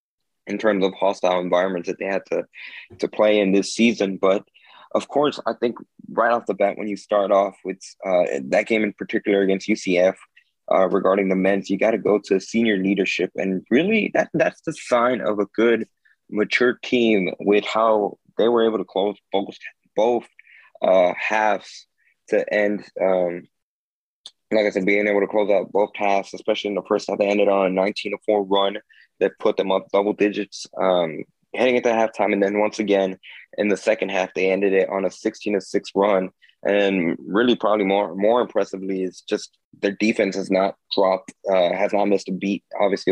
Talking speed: 195 wpm